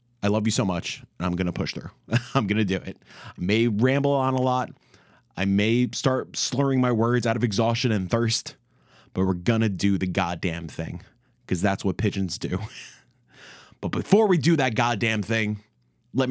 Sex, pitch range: male, 95-120 Hz